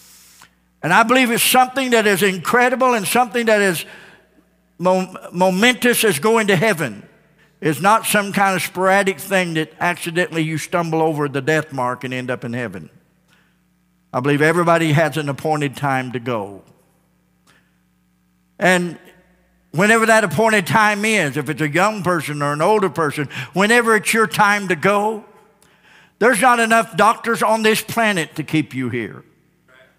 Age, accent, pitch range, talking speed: 50-69, American, 150-200 Hz, 155 wpm